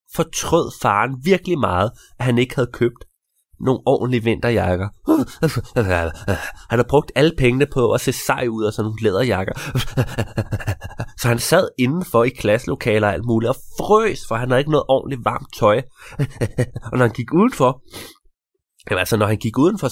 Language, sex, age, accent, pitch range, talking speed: Danish, male, 20-39, native, 110-145 Hz, 170 wpm